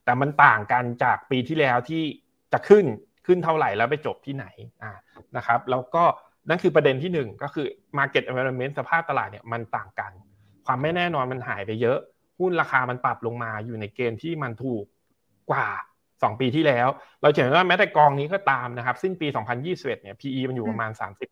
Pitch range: 120-150 Hz